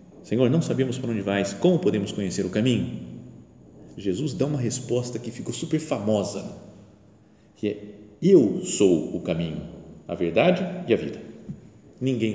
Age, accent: 40-59, Brazilian